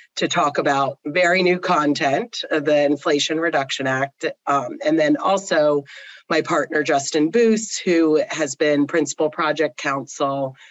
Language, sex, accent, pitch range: English, female, American, 140-175 Hz